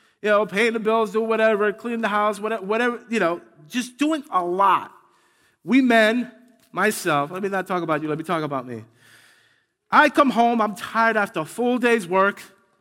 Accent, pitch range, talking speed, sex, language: American, 155-225 Hz, 190 wpm, male, English